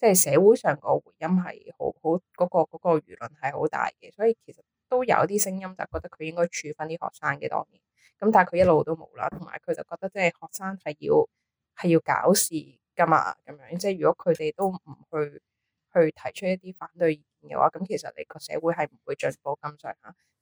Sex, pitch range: female, 160-210 Hz